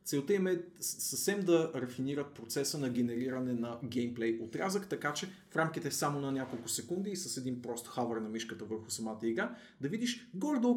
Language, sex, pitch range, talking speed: Bulgarian, male, 115-165 Hz, 185 wpm